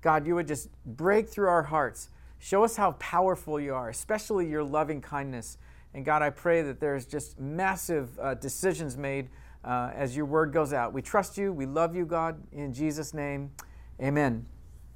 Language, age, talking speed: English, 50-69, 185 wpm